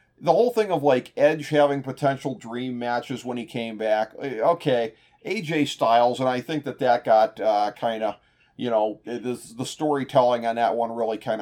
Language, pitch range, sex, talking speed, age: English, 125-170 Hz, male, 180 wpm, 40-59